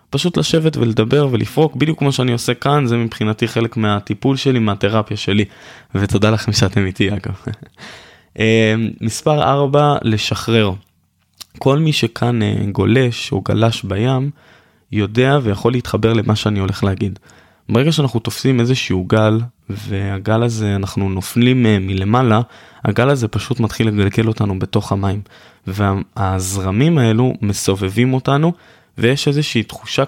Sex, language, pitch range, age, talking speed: male, Hebrew, 105-130 Hz, 20-39, 130 wpm